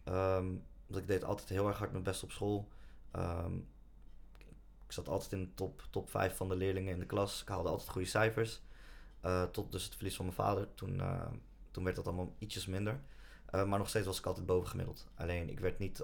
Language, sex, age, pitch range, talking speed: Dutch, male, 20-39, 90-95 Hz, 225 wpm